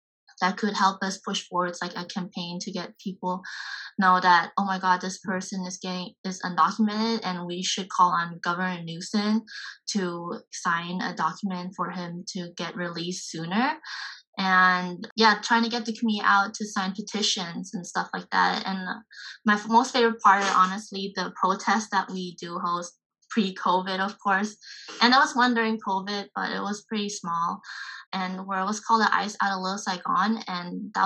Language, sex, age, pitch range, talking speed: English, female, 20-39, 185-230 Hz, 180 wpm